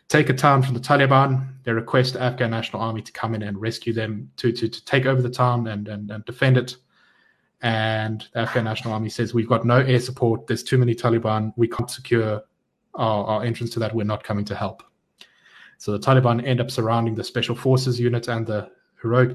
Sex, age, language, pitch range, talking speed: male, 20-39, English, 105-125 Hz, 220 wpm